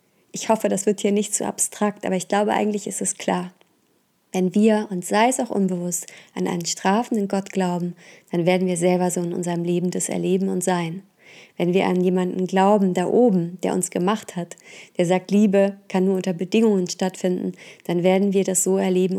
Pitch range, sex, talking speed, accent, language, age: 185-210 Hz, female, 200 wpm, German, German, 20-39